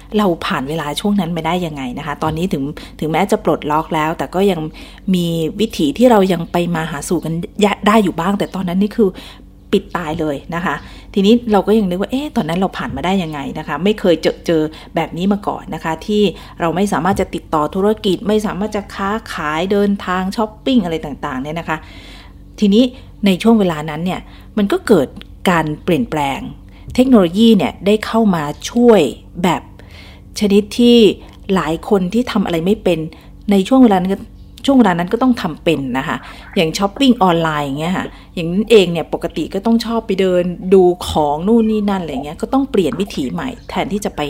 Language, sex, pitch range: Thai, female, 160-210 Hz